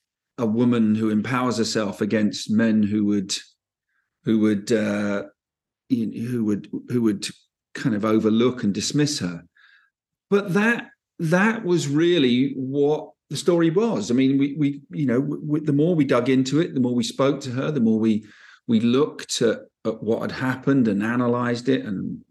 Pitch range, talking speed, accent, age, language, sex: 115-160 Hz, 180 wpm, British, 40-59, English, male